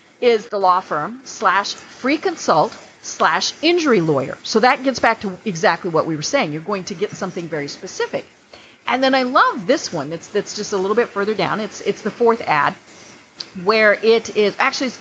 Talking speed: 200 wpm